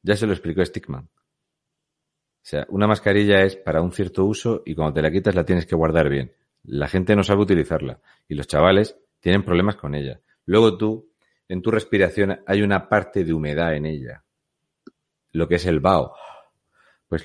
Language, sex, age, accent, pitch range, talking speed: Spanish, male, 40-59, Spanish, 75-95 Hz, 190 wpm